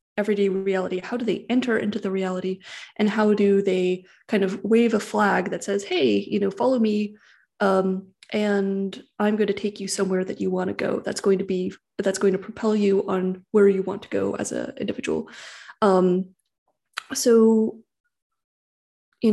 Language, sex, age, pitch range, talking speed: English, female, 20-39, 190-215 Hz, 185 wpm